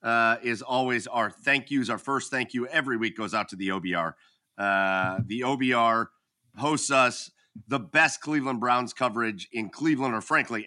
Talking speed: 175 wpm